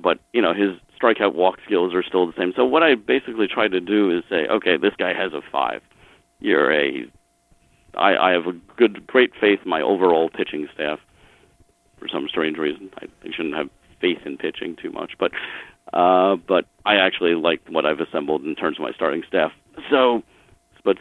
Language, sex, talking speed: English, male, 195 wpm